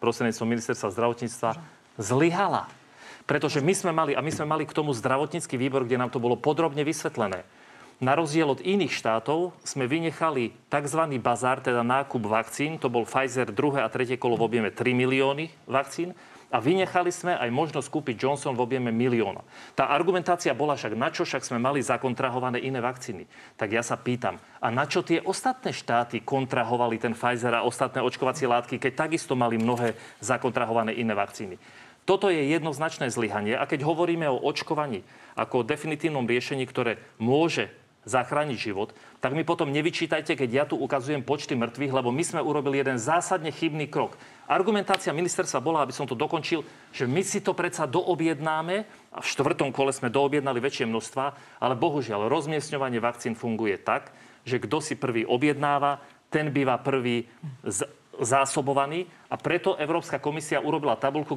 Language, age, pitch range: Slovak, 40-59, 125-160 Hz